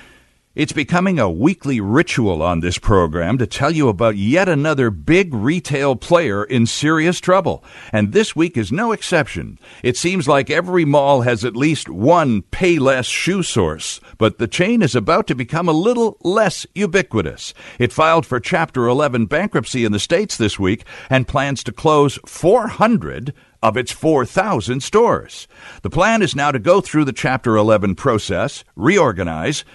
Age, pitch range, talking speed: 60-79, 115-165 Hz, 165 wpm